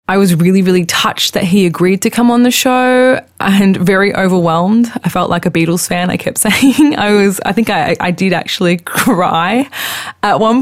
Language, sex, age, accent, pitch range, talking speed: English, female, 20-39, Australian, 170-220 Hz, 205 wpm